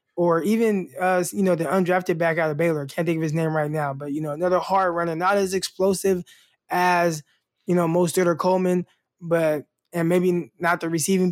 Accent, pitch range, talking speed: American, 155-190 Hz, 210 wpm